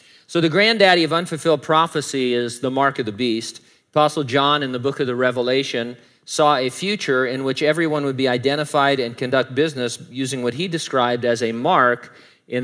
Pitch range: 120-145 Hz